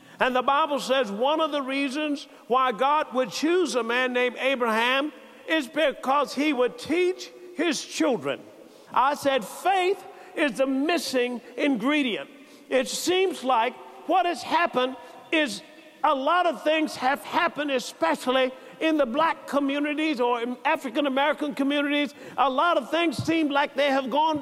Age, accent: 50-69, American